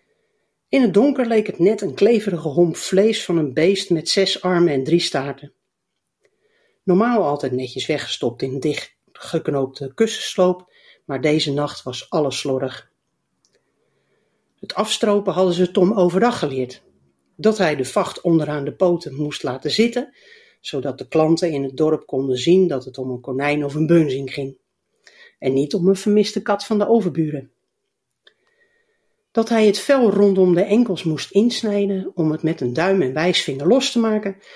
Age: 60-79